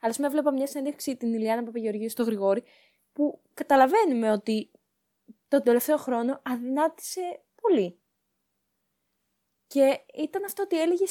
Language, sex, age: Greek, female, 20-39